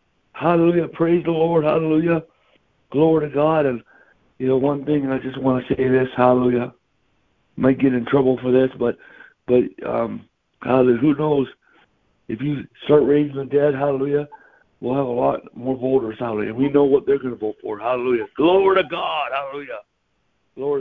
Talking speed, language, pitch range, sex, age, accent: 175 wpm, English, 130-165 Hz, male, 60-79, American